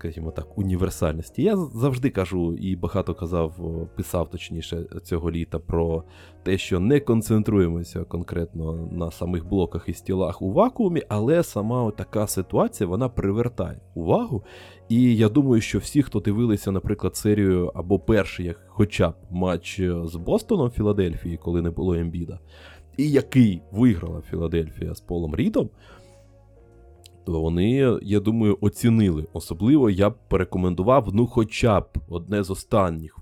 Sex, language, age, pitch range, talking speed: male, Ukrainian, 20-39, 85-110 Hz, 135 wpm